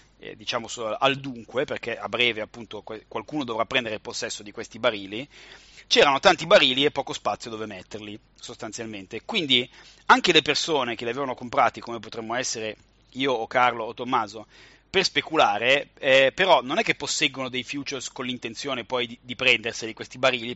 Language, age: Italian, 30-49